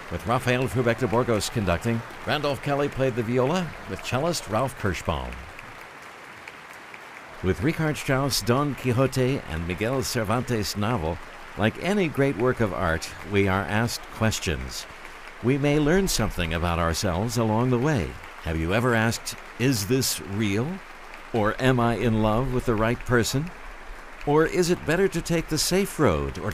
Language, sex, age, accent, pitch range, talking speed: English, male, 60-79, American, 95-135 Hz, 155 wpm